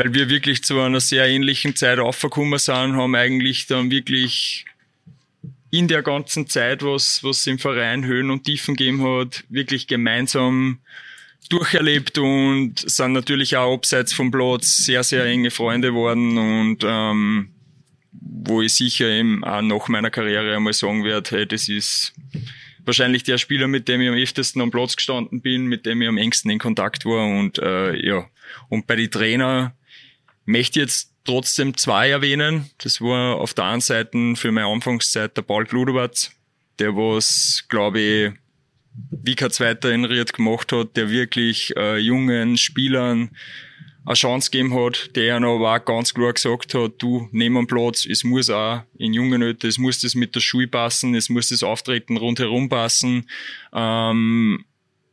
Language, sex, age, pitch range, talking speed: German, male, 20-39, 115-130 Hz, 165 wpm